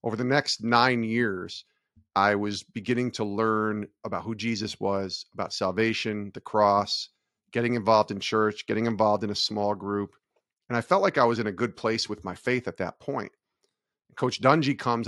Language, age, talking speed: English, 40-59, 185 wpm